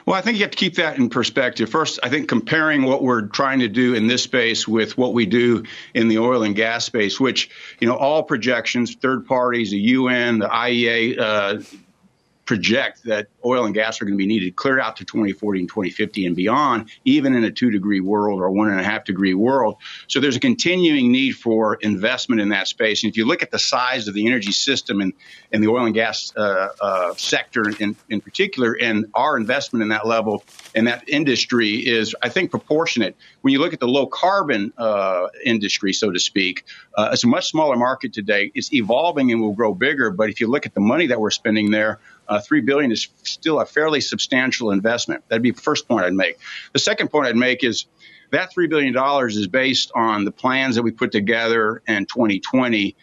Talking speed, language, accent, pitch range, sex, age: 215 wpm, English, American, 105-130 Hz, male, 50-69